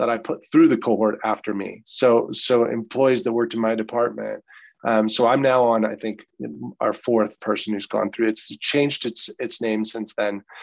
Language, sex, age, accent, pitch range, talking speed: English, male, 30-49, American, 105-125 Hz, 205 wpm